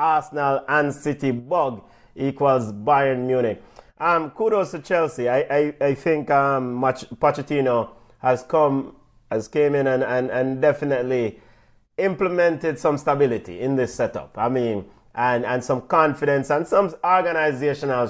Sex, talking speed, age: male, 140 wpm, 30-49